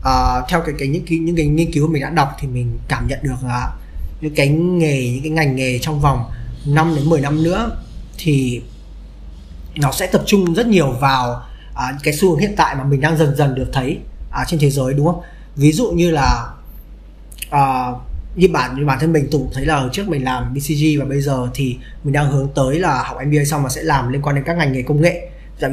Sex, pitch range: male, 130-165 Hz